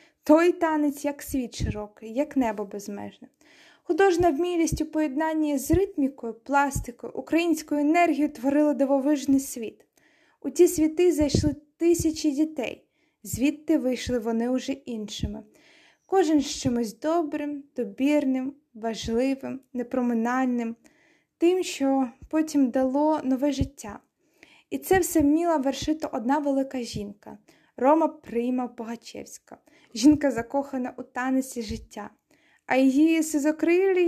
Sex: female